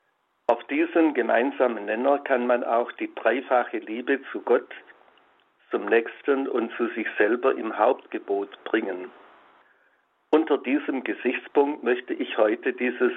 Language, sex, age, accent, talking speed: German, male, 60-79, German, 130 wpm